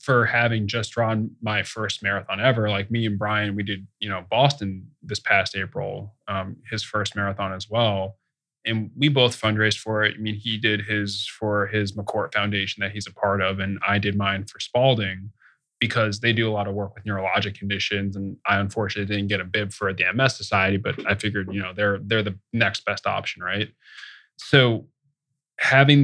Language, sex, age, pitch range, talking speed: English, male, 20-39, 100-120 Hz, 200 wpm